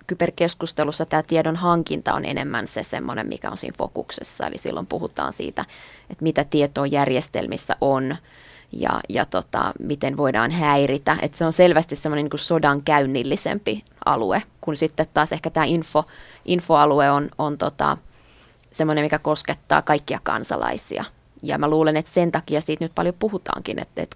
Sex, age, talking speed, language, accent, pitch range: female, 20-39, 155 wpm, Finnish, native, 145-165 Hz